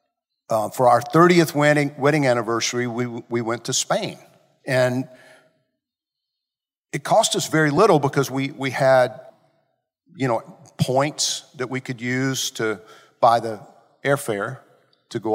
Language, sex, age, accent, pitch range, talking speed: English, male, 50-69, American, 130-170 Hz, 135 wpm